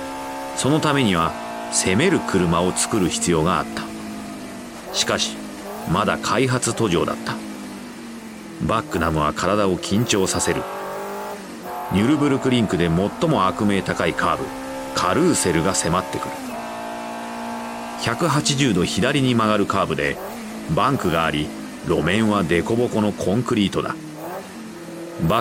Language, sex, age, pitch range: Japanese, male, 40-59, 80-130 Hz